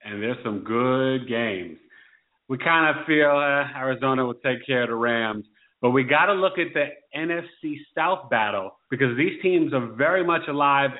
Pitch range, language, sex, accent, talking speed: 120-145 Hz, English, male, American, 185 wpm